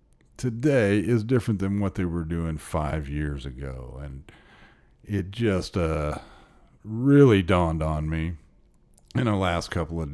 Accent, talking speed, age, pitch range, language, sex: American, 140 wpm, 40-59, 80-100 Hz, English, male